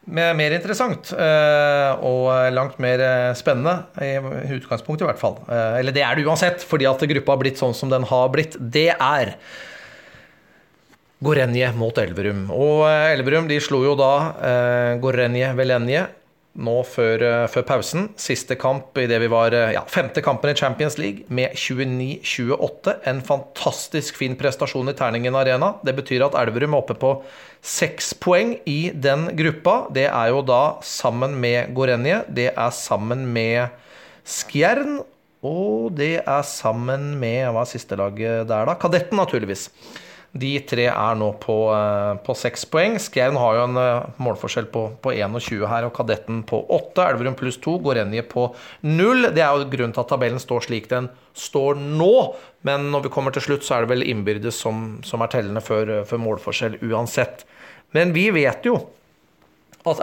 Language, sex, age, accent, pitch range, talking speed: English, male, 30-49, Swedish, 120-145 Hz, 170 wpm